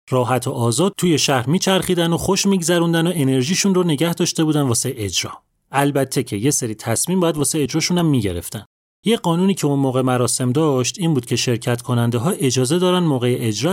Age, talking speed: 30-49, 195 wpm